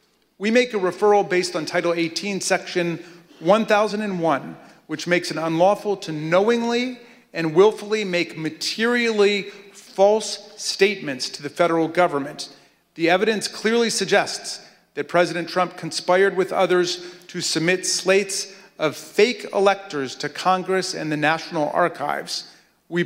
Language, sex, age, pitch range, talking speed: English, male, 40-59, 165-200 Hz, 130 wpm